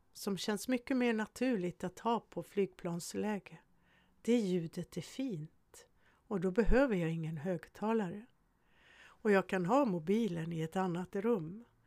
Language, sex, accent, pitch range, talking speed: Swedish, female, native, 160-210 Hz, 140 wpm